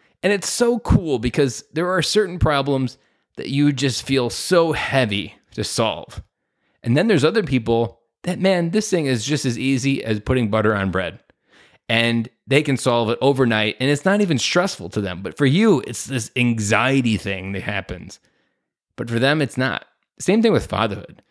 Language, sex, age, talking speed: English, male, 20-39, 185 wpm